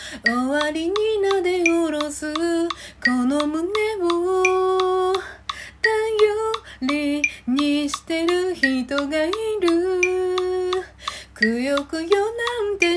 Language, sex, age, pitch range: Japanese, female, 30-49, 295-365 Hz